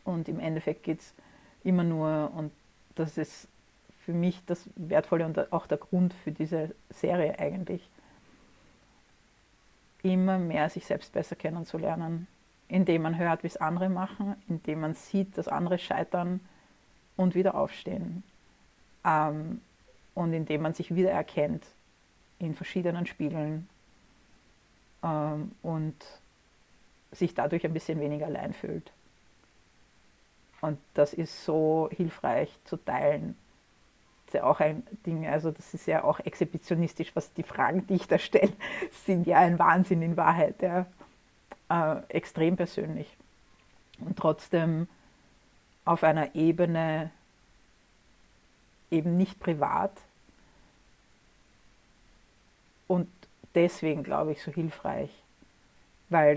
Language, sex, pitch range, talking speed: German, female, 155-180 Hz, 120 wpm